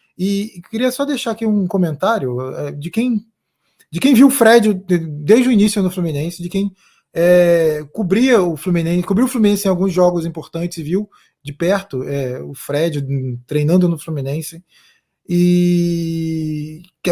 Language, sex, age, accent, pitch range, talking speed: Portuguese, male, 20-39, Brazilian, 160-220 Hz, 135 wpm